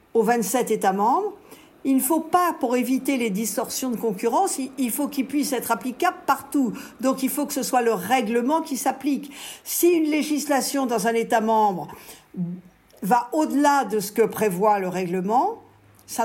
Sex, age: female, 50-69